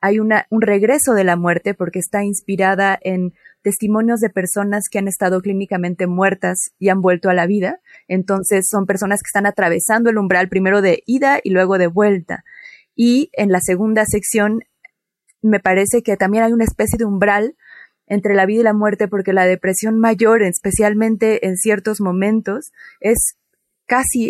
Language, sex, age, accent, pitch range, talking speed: Spanish, female, 20-39, Mexican, 185-210 Hz, 170 wpm